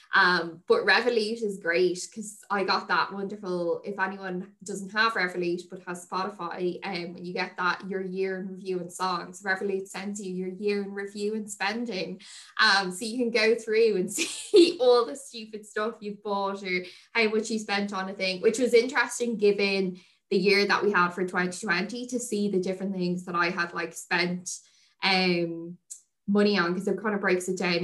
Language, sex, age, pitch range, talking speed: English, female, 10-29, 180-210 Hz, 200 wpm